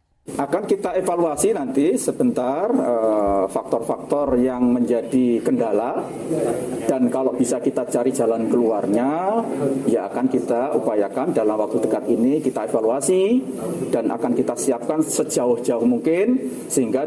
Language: Indonesian